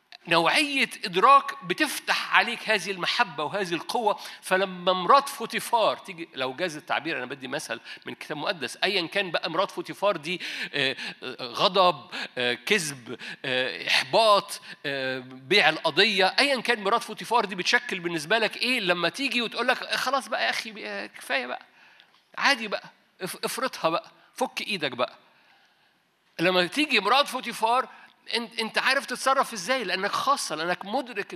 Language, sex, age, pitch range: Arabic, male, 50-69, 165-240 Hz